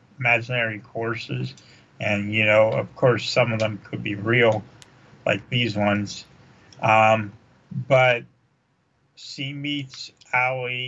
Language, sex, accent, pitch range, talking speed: English, male, American, 115-140 Hz, 115 wpm